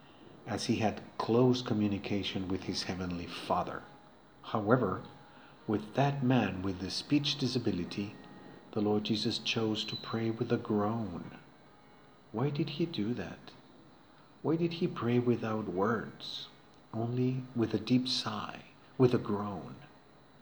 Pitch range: 105-130 Hz